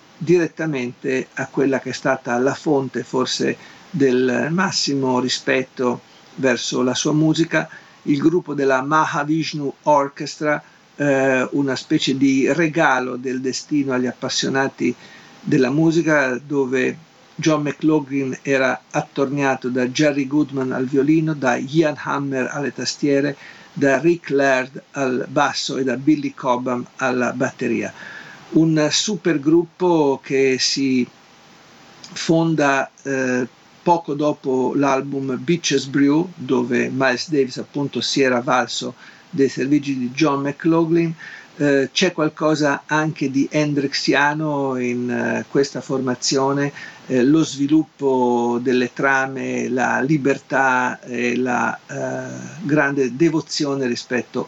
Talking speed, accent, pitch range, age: 115 wpm, native, 130-155 Hz, 50-69